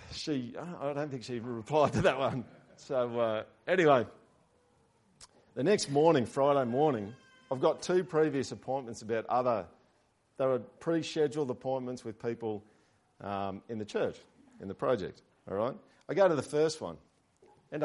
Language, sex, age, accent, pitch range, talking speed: English, male, 50-69, Australian, 110-145 Hz, 155 wpm